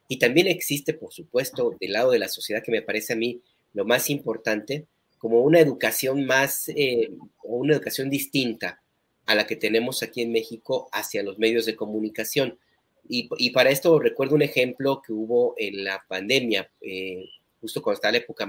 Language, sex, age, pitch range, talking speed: Spanish, male, 40-59, 105-145 Hz, 185 wpm